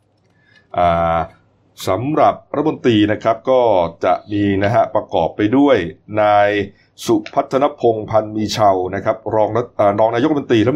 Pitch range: 100-125 Hz